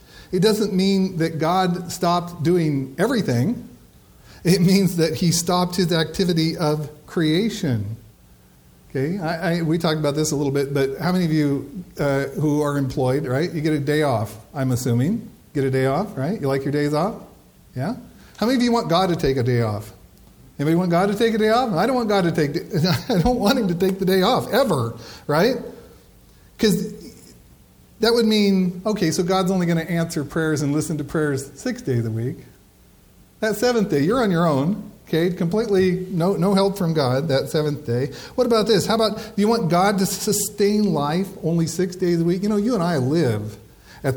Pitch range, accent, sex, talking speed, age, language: 135-195 Hz, American, male, 205 wpm, 50-69, English